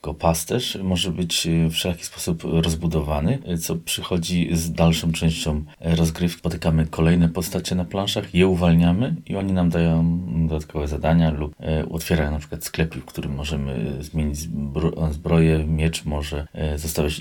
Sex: male